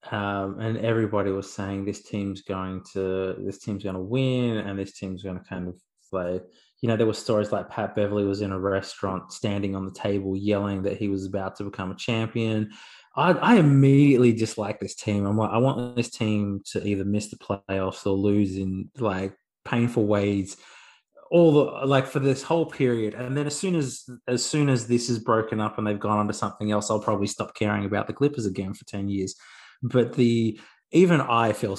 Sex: male